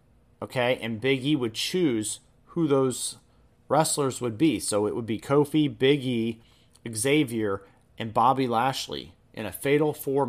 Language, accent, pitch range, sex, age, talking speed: English, American, 120-150 Hz, male, 30-49, 150 wpm